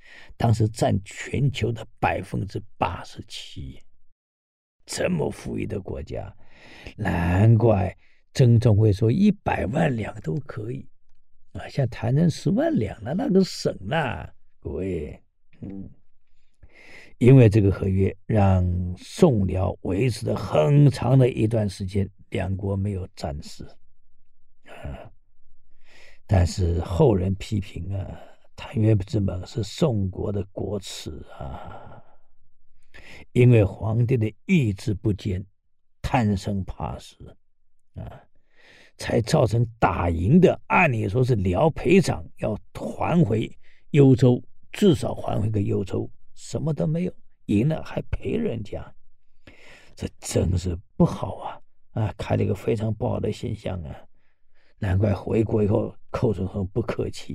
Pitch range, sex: 95-120 Hz, male